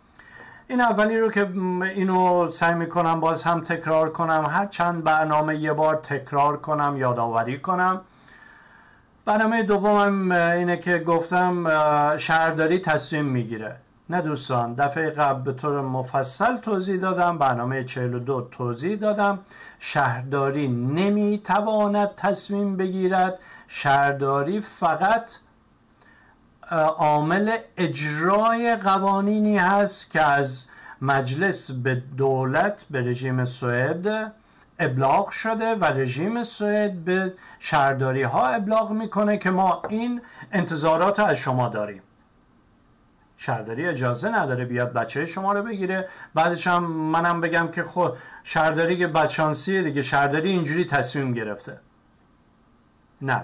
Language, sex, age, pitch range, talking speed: Persian, male, 50-69, 135-190 Hz, 115 wpm